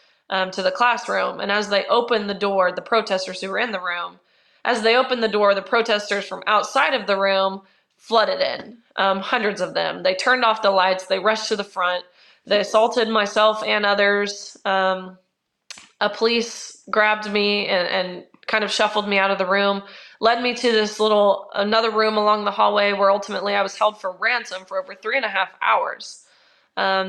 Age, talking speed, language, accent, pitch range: 20-39, 200 wpm, English, American, 195-220 Hz